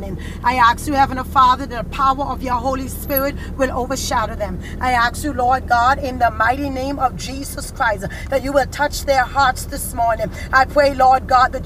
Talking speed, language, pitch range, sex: 205 wpm, English, 265-285 Hz, female